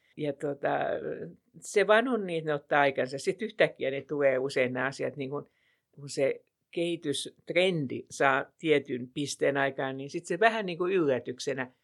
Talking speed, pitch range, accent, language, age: 135 wpm, 140-160 Hz, Finnish, English, 60-79